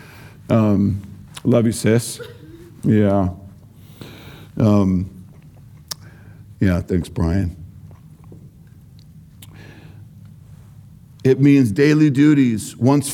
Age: 50-69